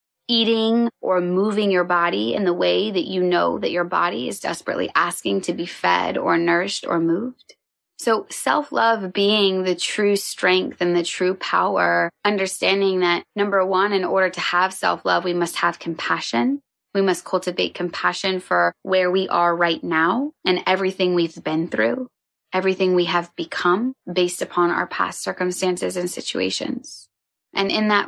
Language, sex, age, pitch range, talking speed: English, female, 20-39, 175-195 Hz, 160 wpm